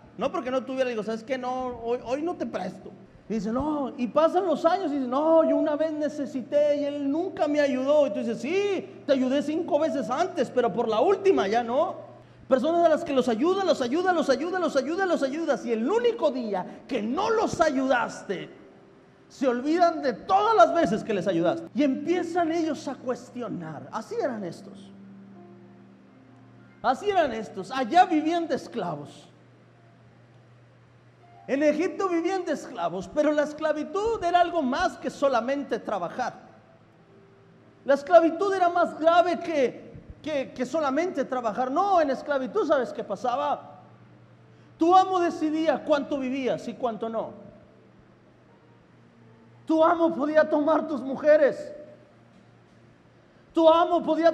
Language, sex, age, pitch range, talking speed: Spanish, male, 40-59, 250-330 Hz, 155 wpm